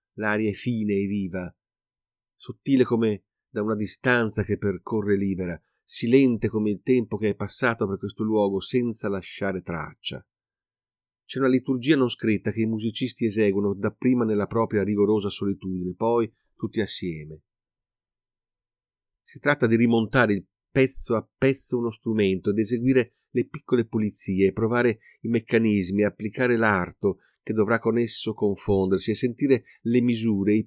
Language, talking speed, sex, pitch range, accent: Italian, 145 wpm, male, 100-120 Hz, native